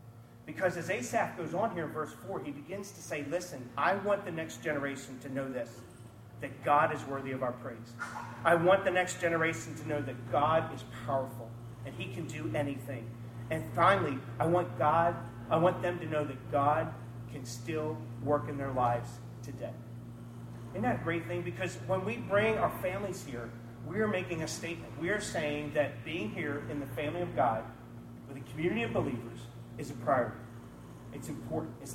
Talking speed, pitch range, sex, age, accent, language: 195 wpm, 120-165 Hz, male, 40-59, American, English